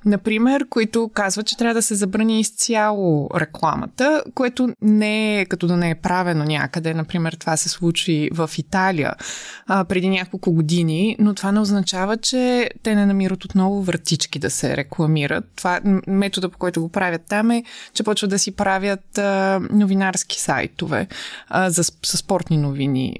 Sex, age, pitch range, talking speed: female, 20-39, 170-215 Hz, 165 wpm